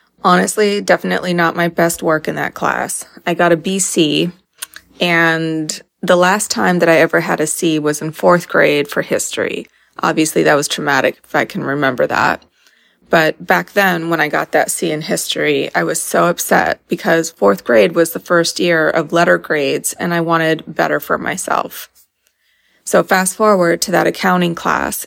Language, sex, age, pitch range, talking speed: English, female, 20-39, 165-190 Hz, 180 wpm